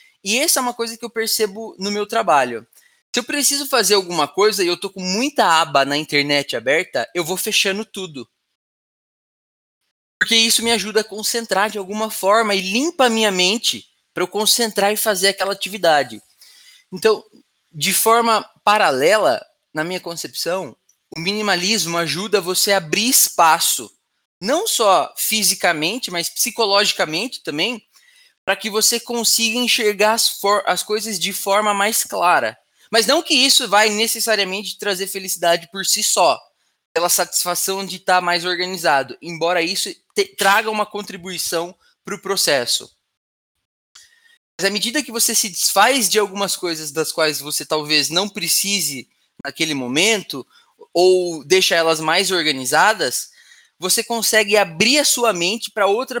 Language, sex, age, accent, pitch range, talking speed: Portuguese, male, 20-39, Brazilian, 180-230 Hz, 150 wpm